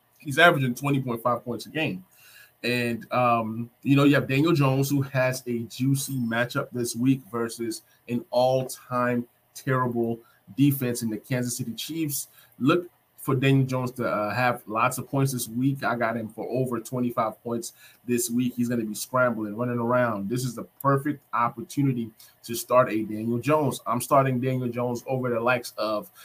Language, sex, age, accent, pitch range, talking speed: English, male, 20-39, American, 115-135 Hz, 175 wpm